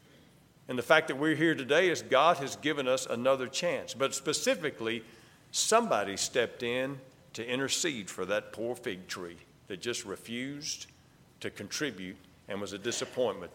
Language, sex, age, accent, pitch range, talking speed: English, male, 50-69, American, 135-195 Hz, 155 wpm